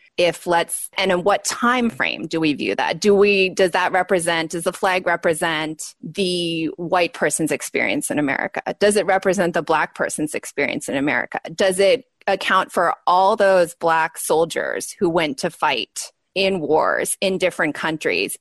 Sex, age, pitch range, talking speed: female, 20-39, 170-200 Hz, 170 wpm